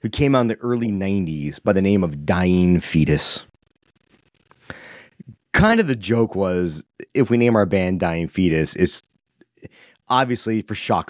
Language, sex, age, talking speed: English, male, 30-49, 155 wpm